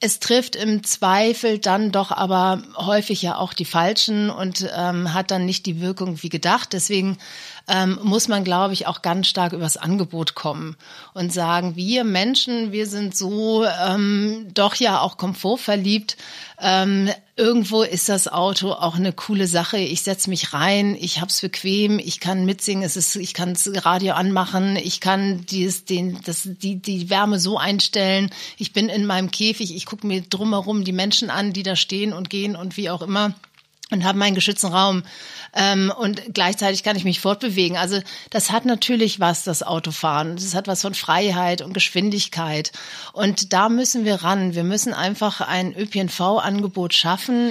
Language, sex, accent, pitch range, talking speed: German, female, German, 185-210 Hz, 175 wpm